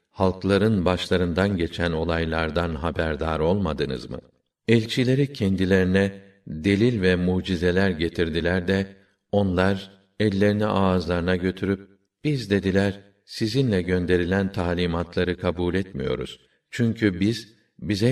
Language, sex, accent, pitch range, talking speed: Turkish, male, native, 85-105 Hz, 95 wpm